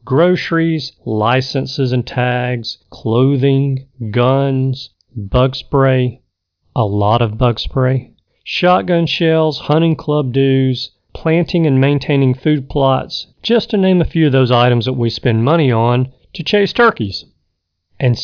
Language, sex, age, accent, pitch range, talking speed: English, male, 40-59, American, 120-150 Hz, 130 wpm